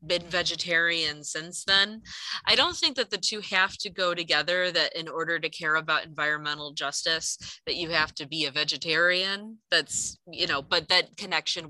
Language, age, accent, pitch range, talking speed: English, 20-39, American, 155-180 Hz, 180 wpm